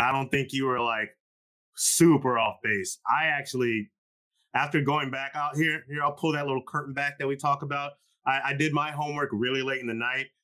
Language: English